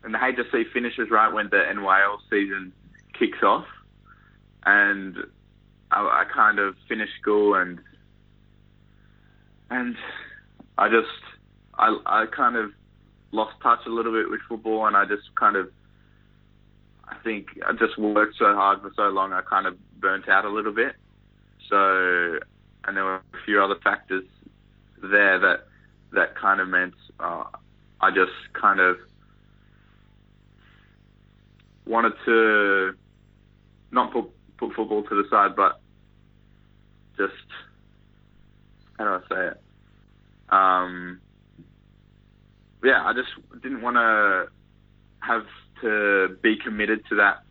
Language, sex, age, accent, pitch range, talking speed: English, male, 20-39, Australian, 100-110 Hz, 130 wpm